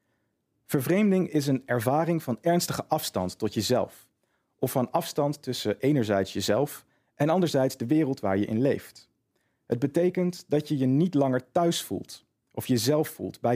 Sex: male